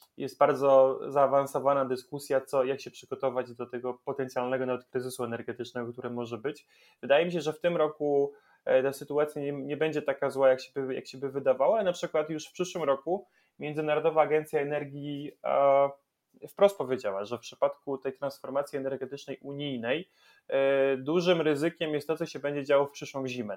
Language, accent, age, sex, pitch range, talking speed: Polish, native, 20-39, male, 130-150 Hz, 180 wpm